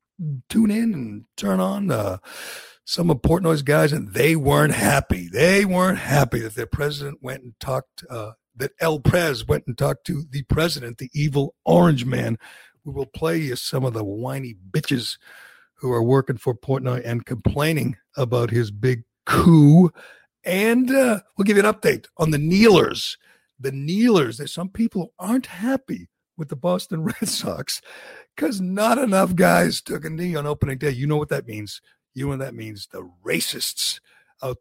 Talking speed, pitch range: 180 wpm, 120-165 Hz